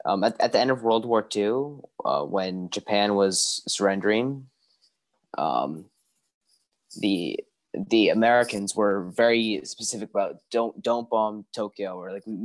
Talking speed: 135 wpm